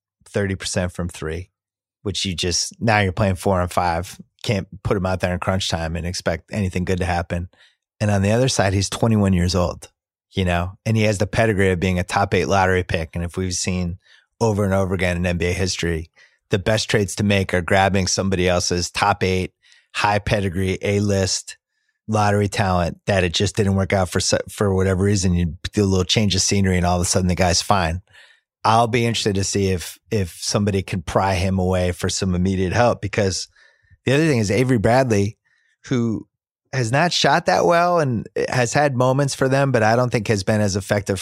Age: 30-49